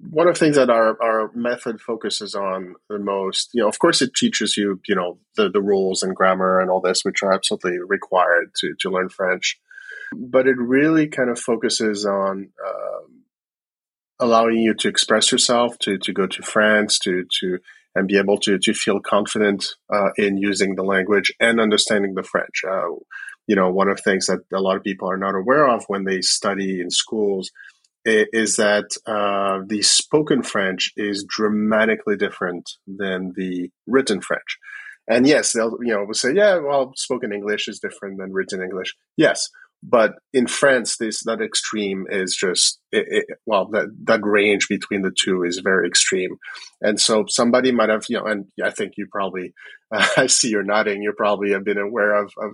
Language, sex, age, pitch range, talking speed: English, male, 30-49, 95-115 Hz, 190 wpm